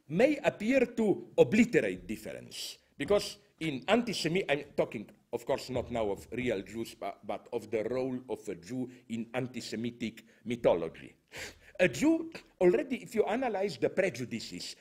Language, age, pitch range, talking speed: English, 50-69, 140-205 Hz, 145 wpm